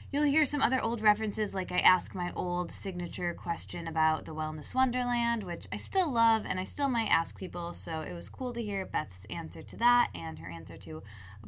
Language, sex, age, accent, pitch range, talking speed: English, female, 20-39, American, 150-225 Hz, 220 wpm